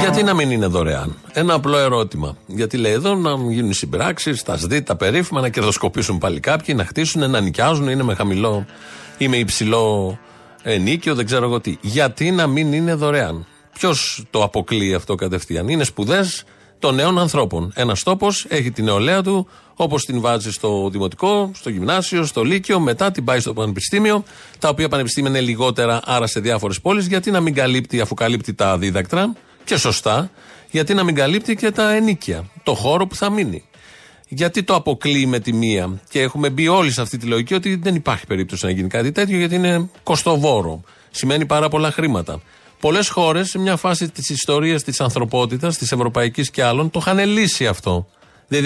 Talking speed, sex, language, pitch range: 185 wpm, male, Greek, 110-170 Hz